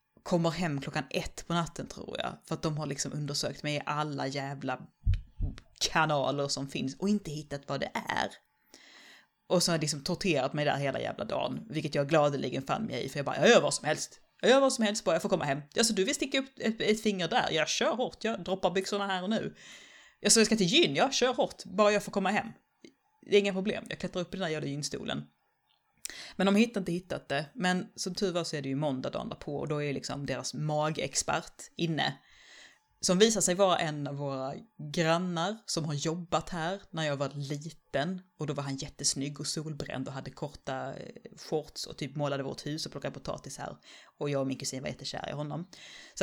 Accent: native